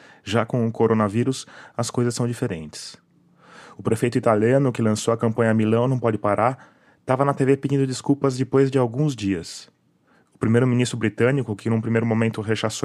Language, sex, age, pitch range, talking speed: Portuguese, male, 20-39, 110-125 Hz, 170 wpm